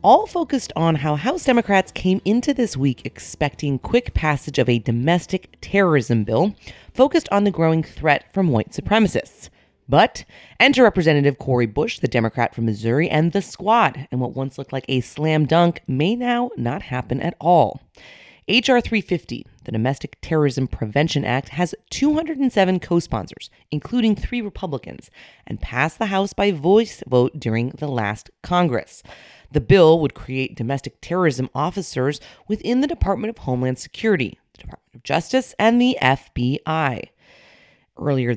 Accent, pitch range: American, 130-195 Hz